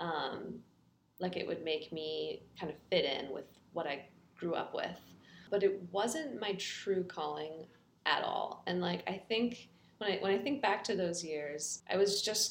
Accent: American